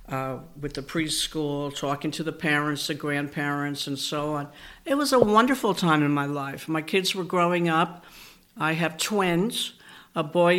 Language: English